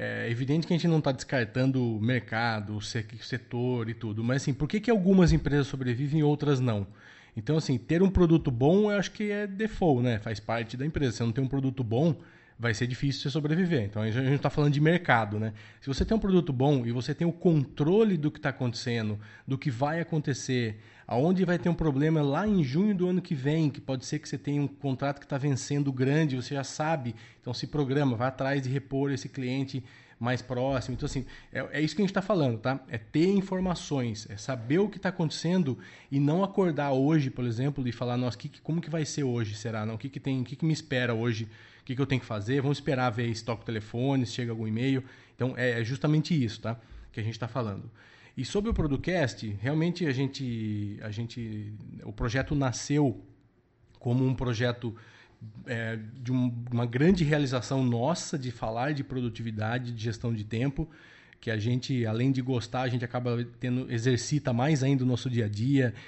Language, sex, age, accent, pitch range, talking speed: Portuguese, male, 20-39, Brazilian, 120-150 Hz, 215 wpm